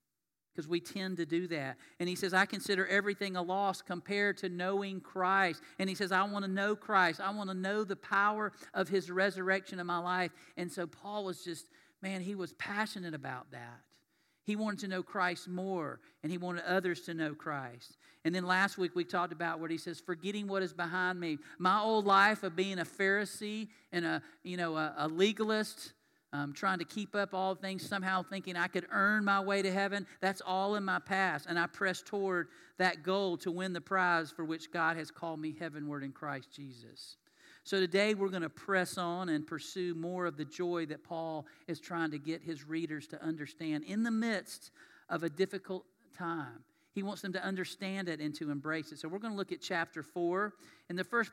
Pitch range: 165-195 Hz